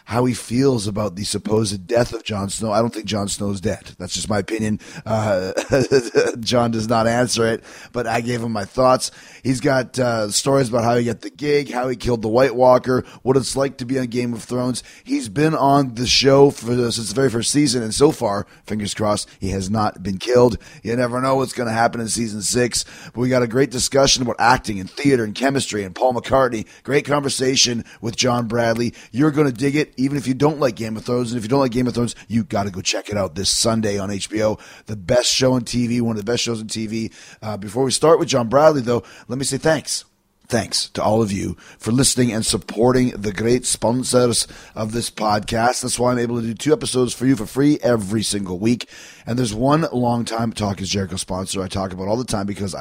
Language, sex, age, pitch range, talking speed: English, male, 30-49, 110-130 Hz, 235 wpm